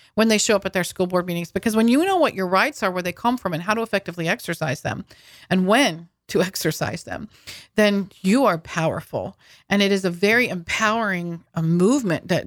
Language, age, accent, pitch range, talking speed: English, 40-59, American, 185-250 Hz, 215 wpm